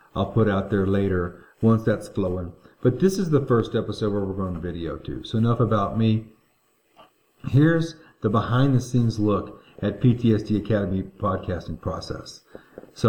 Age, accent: 40-59, American